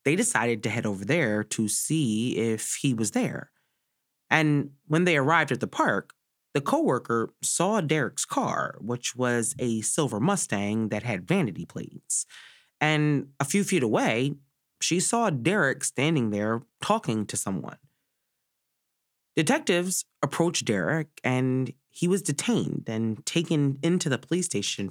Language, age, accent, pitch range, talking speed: English, 30-49, American, 115-160 Hz, 140 wpm